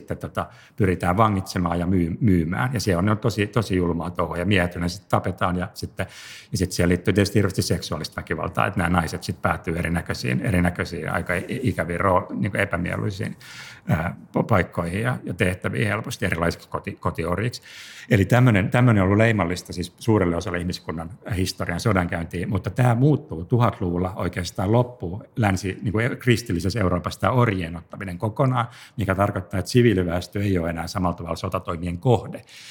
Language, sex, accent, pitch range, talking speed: Finnish, male, native, 90-110 Hz, 145 wpm